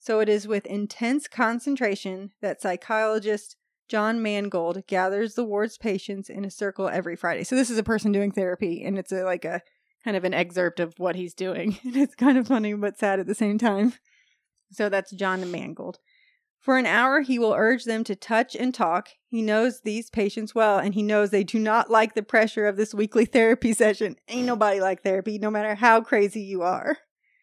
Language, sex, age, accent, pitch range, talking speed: English, female, 30-49, American, 200-245 Hz, 200 wpm